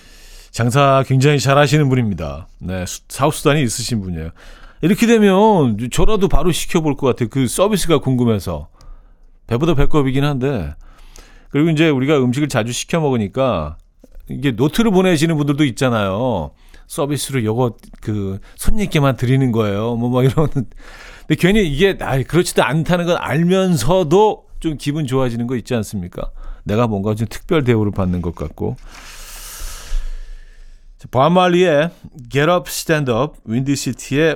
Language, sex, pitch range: Korean, male, 100-150 Hz